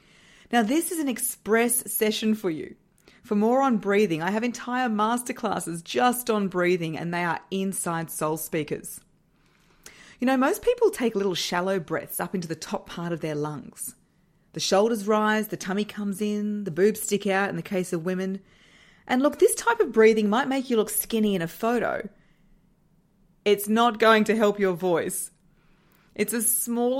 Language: English